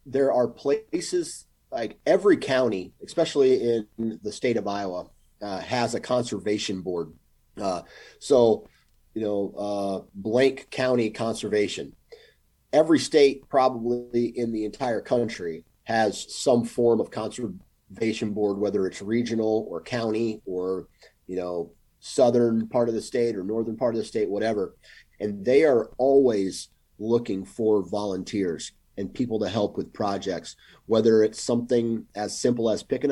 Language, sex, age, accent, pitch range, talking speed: English, male, 30-49, American, 100-120 Hz, 140 wpm